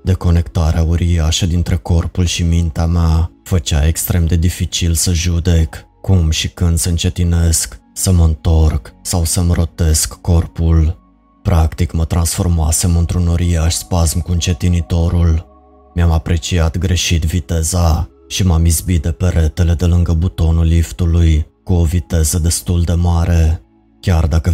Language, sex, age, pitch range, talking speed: Romanian, male, 20-39, 80-90 Hz, 135 wpm